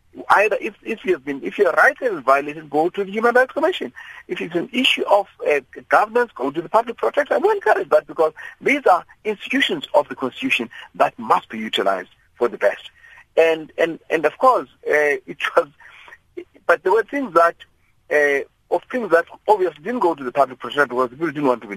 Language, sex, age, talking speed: English, male, 50-69, 210 wpm